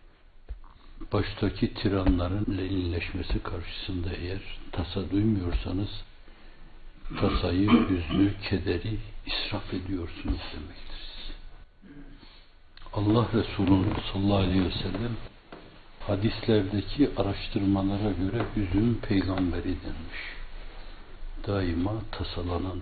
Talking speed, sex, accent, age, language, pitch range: 70 wpm, male, native, 60-79, Turkish, 90-105 Hz